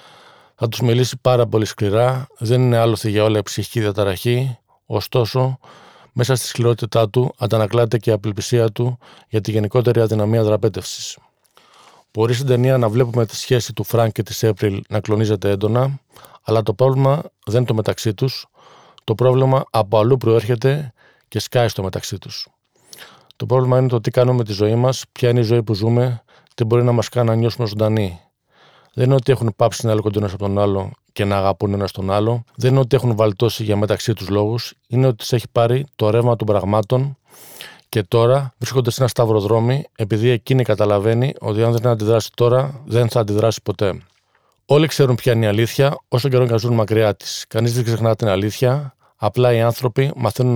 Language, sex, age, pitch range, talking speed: Greek, male, 40-59, 110-125 Hz, 185 wpm